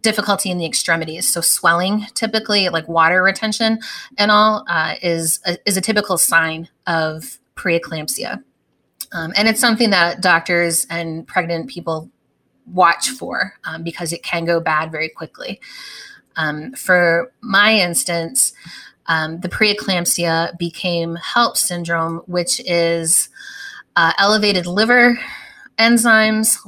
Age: 30-49